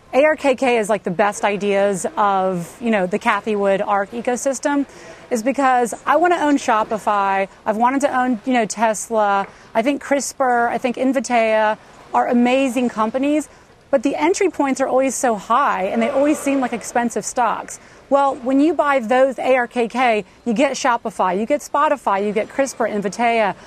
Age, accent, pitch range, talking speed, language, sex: 30-49, American, 220-270 Hz, 170 wpm, English, female